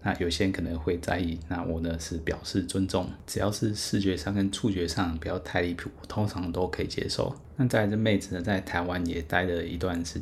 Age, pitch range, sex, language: 20-39, 85-100 Hz, male, Chinese